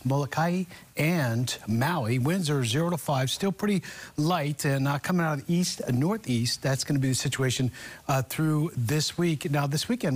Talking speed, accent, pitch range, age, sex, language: 195 wpm, American, 130-170 Hz, 50-69, male, English